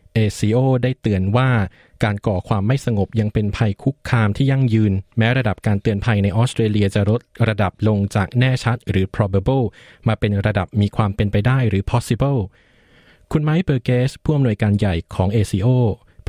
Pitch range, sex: 100-120 Hz, male